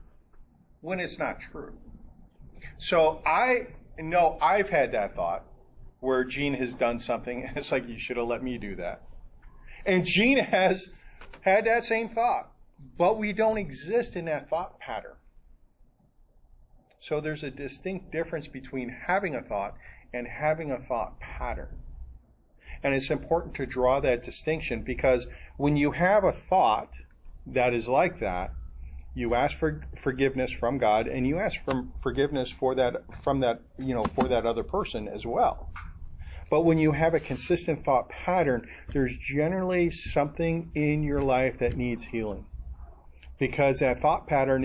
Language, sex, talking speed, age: English, male, 155 wpm, 40-59